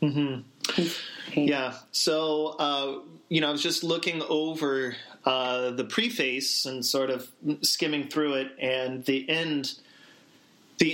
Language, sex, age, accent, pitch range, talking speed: English, male, 30-49, American, 130-155 Hz, 135 wpm